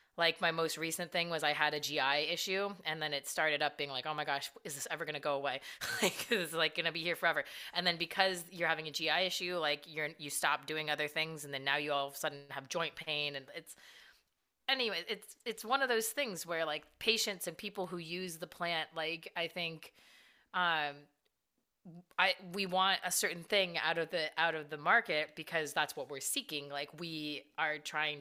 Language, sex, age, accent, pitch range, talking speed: English, female, 30-49, American, 150-180 Hz, 225 wpm